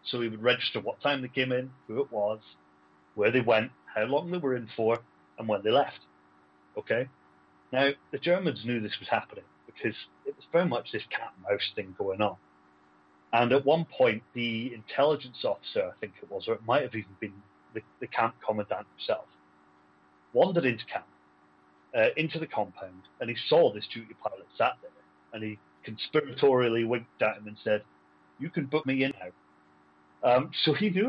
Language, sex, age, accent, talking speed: English, male, 40-59, British, 190 wpm